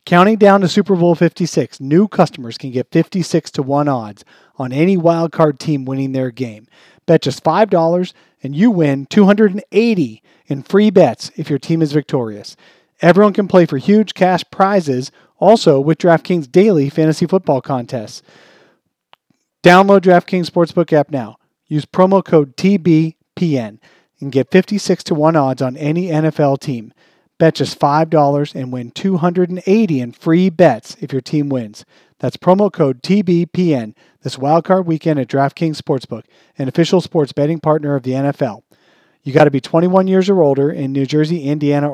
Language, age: English, 40-59